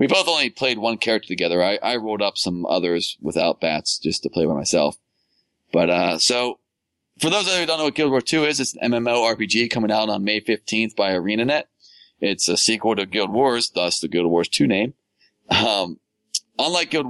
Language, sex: English, male